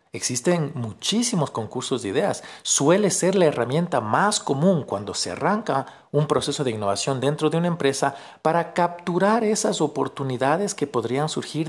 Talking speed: 150 wpm